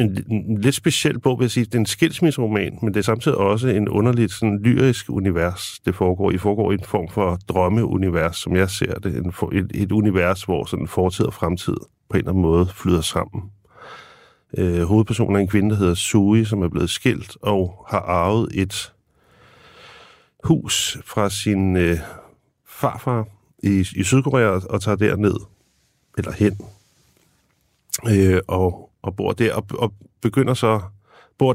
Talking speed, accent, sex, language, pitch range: 170 wpm, native, male, Danish, 95-110 Hz